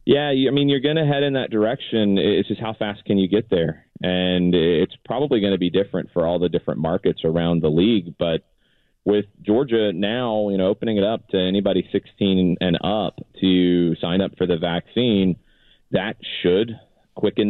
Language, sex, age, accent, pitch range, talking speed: English, male, 30-49, American, 90-110 Hz, 190 wpm